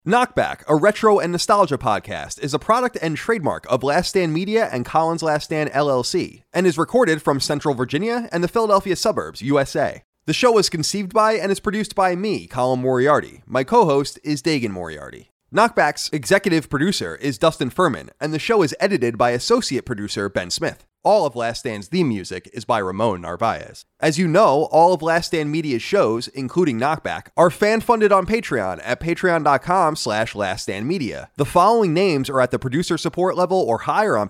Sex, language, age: male, English, 30-49